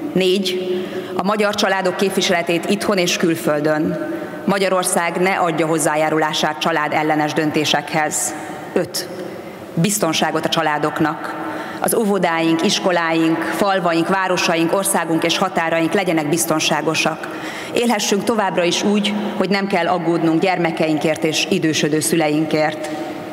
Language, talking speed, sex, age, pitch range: Hungarian, 105 wpm, female, 30-49, 160-190 Hz